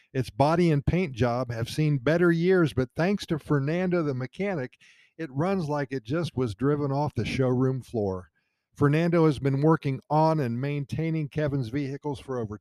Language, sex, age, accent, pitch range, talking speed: English, male, 50-69, American, 120-160 Hz, 175 wpm